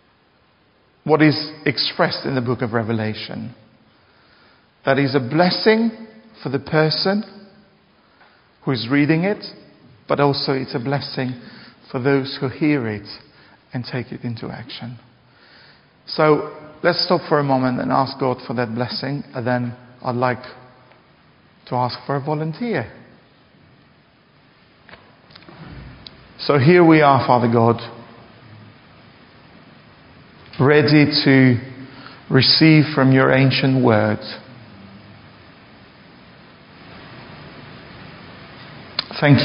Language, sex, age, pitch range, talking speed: English, male, 50-69, 125-145 Hz, 105 wpm